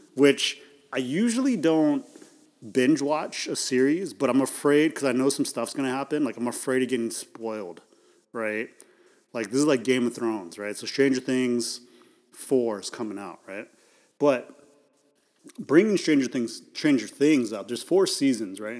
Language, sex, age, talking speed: English, male, 30-49, 165 wpm